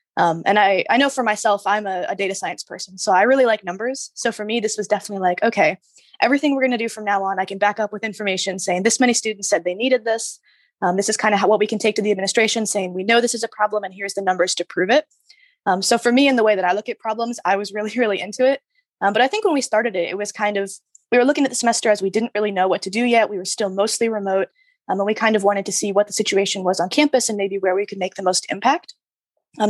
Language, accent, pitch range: English, American, 195-240 Hz